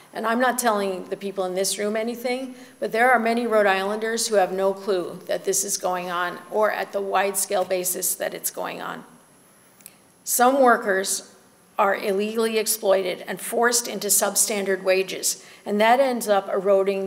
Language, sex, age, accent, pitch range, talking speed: English, female, 50-69, American, 190-230 Hz, 170 wpm